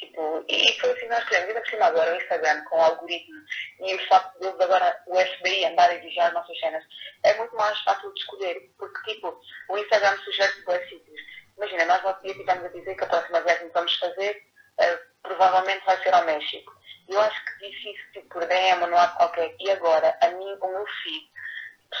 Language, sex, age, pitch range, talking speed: Portuguese, female, 20-39, 175-220 Hz, 220 wpm